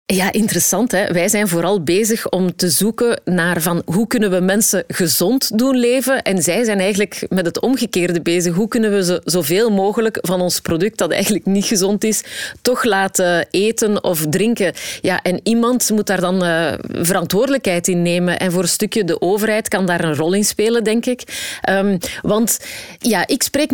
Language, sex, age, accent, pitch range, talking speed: Dutch, female, 30-49, Belgian, 180-220 Hz, 190 wpm